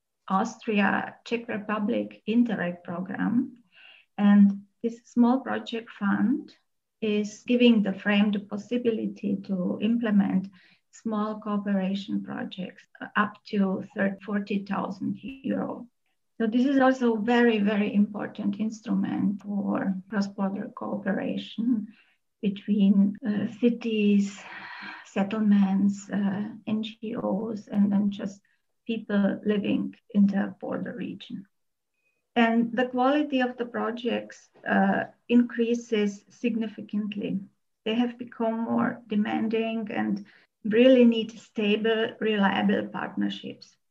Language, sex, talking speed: English, female, 95 wpm